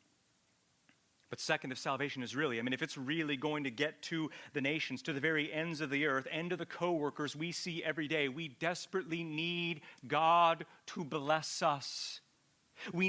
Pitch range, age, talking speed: 120-185 Hz, 40-59, 185 wpm